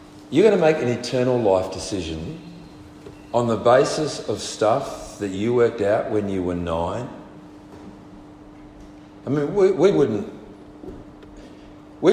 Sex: male